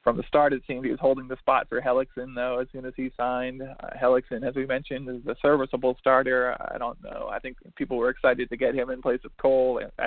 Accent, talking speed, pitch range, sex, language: American, 255 wpm, 125-130 Hz, male, English